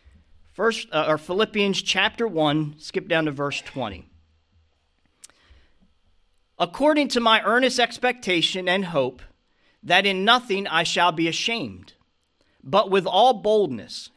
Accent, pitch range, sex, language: American, 155-215 Hz, male, English